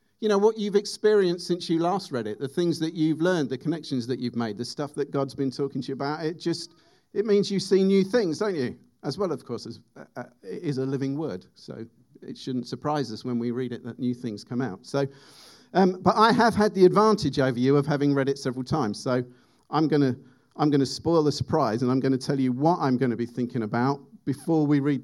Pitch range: 125-160 Hz